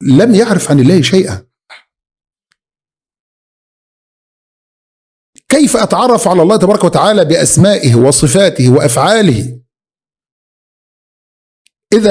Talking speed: 75 wpm